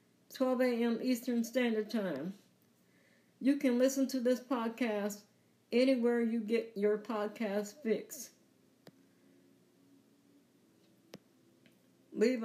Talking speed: 85 wpm